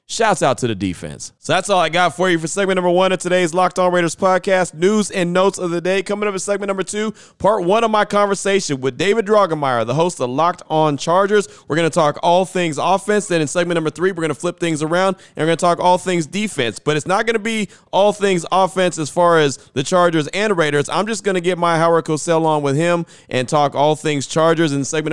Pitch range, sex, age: 130-175 Hz, male, 30-49